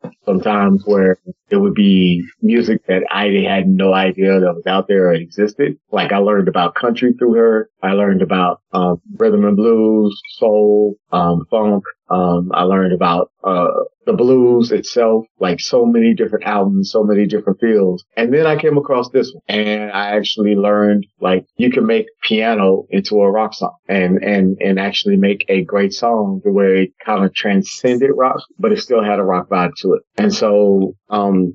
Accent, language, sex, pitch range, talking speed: American, English, male, 95-110 Hz, 185 wpm